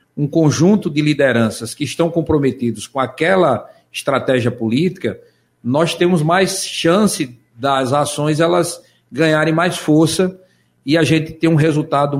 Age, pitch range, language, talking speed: 50-69, 130-170 Hz, Portuguese, 135 wpm